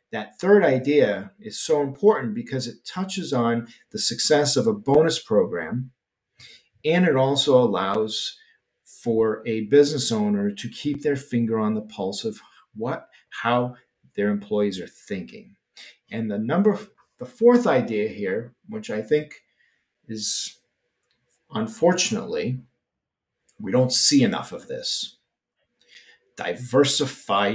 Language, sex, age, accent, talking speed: English, male, 50-69, American, 125 wpm